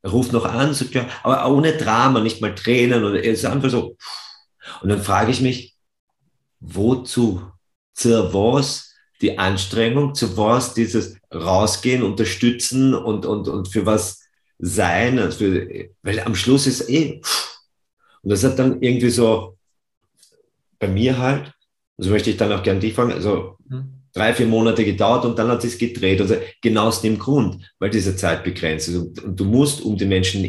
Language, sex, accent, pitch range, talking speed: German, male, German, 95-125 Hz, 165 wpm